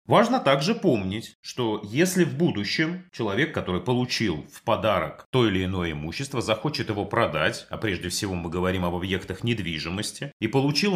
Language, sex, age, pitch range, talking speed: Russian, male, 30-49, 95-140 Hz, 160 wpm